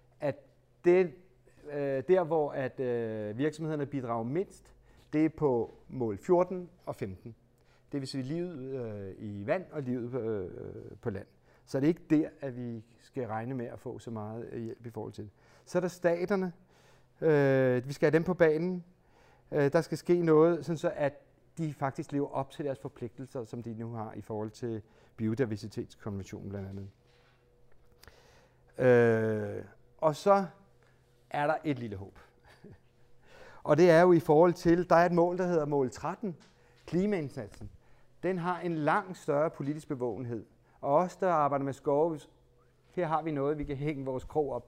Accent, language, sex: native, Danish, male